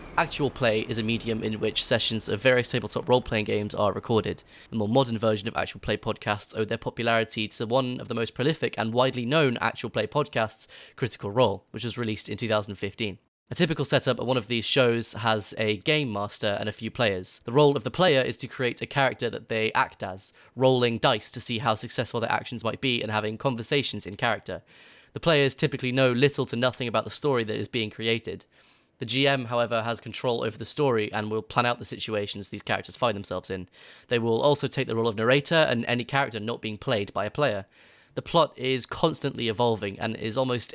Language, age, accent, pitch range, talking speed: English, 10-29, British, 110-130 Hz, 220 wpm